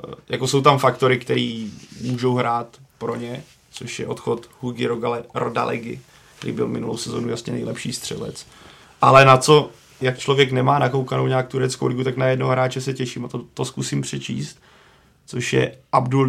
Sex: male